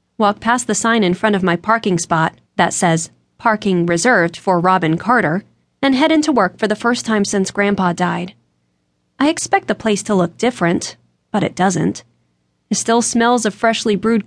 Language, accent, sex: English, American, female